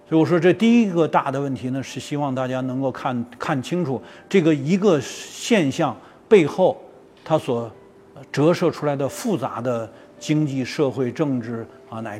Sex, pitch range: male, 125-155 Hz